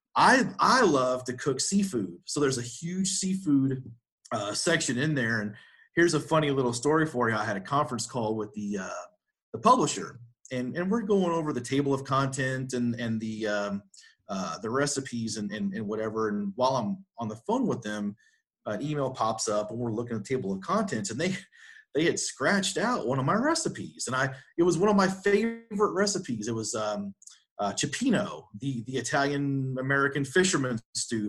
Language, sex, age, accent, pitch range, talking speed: English, male, 30-49, American, 115-155 Hz, 205 wpm